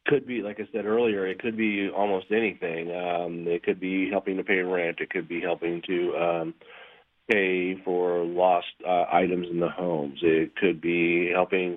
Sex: male